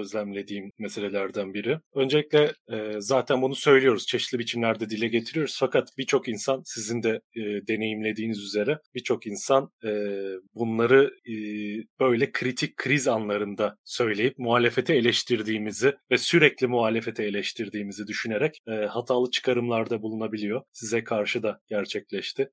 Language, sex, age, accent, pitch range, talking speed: Turkish, male, 30-49, native, 110-140 Hz, 115 wpm